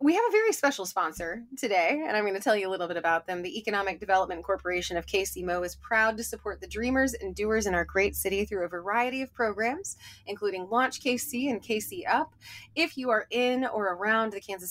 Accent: American